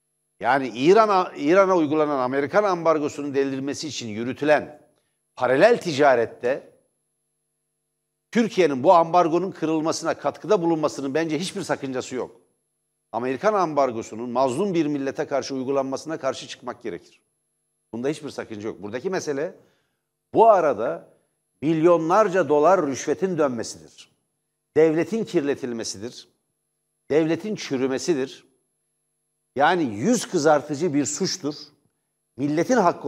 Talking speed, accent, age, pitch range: 100 wpm, native, 60-79, 130-180 Hz